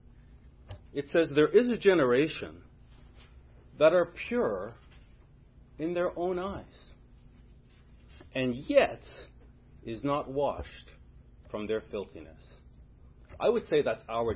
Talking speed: 110 wpm